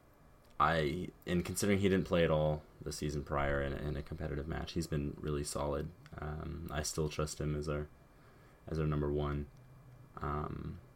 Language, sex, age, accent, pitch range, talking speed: English, male, 20-39, American, 70-85 Hz, 175 wpm